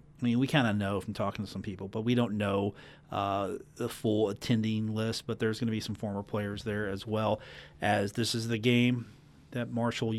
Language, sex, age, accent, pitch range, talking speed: English, male, 40-59, American, 110-140 Hz, 225 wpm